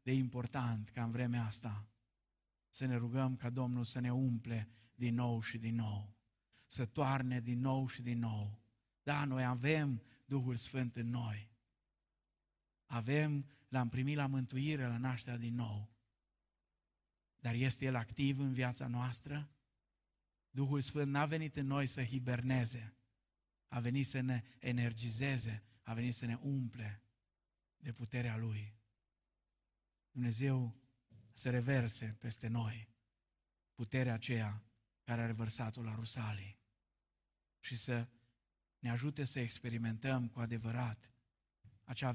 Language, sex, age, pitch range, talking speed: Romanian, male, 50-69, 110-125 Hz, 130 wpm